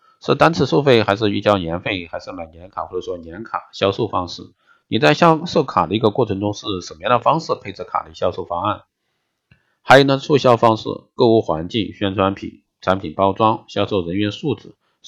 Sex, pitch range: male, 90-125 Hz